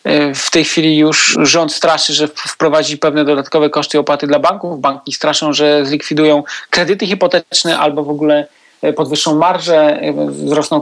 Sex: male